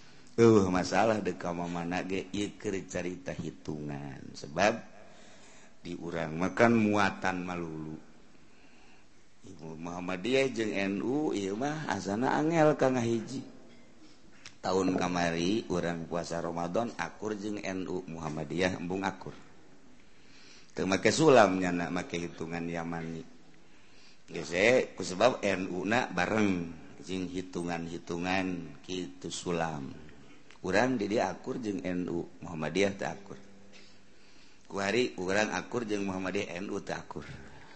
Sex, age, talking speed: male, 50-69, 100 wpm